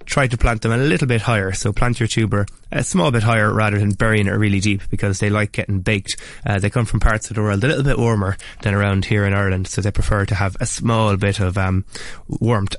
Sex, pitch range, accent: male, 100-115 Hz, Irish